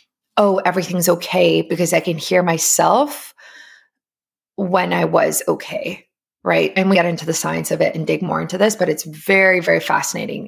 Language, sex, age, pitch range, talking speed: English, female, 20-39, 170-205 Hz, 180 wpm